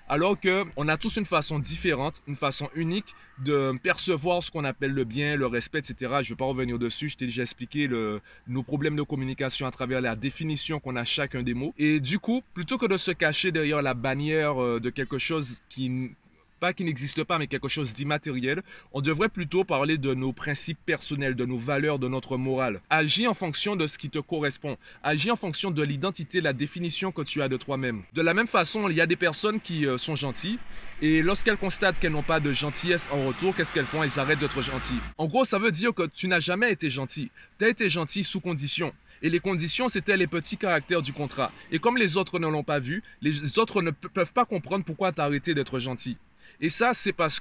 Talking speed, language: 230 wpm, French